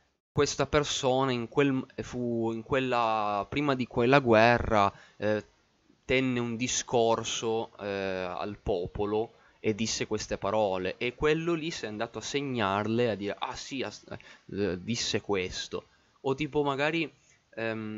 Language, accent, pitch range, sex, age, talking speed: Italian, native, 100-125 Hz, male, 20-39, 140 wpm